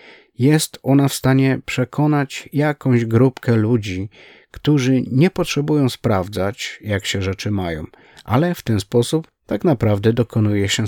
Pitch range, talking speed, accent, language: 105-130 Hz, 130 wpm, native, Polish